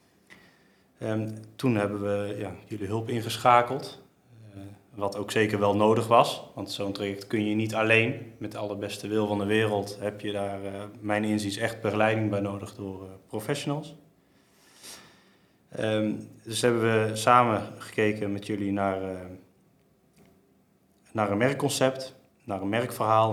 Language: Dutch